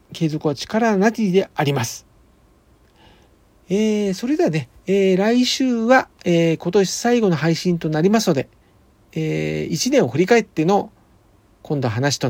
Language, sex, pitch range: Japanese, male, 155-235 Hz